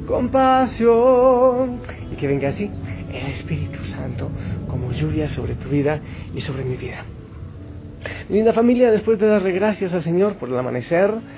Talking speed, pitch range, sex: 155 wpm, 125-195 Hz, male